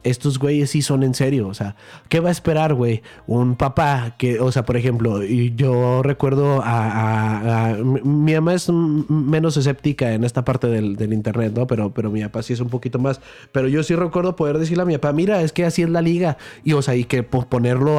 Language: English